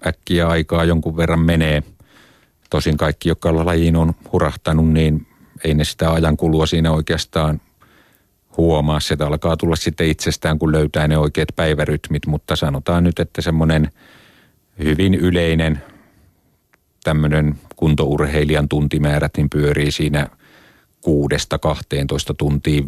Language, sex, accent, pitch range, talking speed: Finnish, male, native, 75-80 Hz, 115 wpm